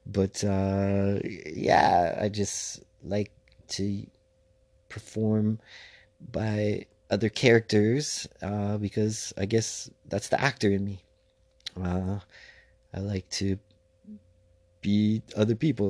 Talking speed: 100 wpm